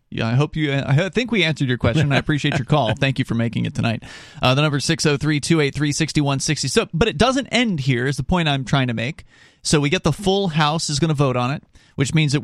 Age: 30-49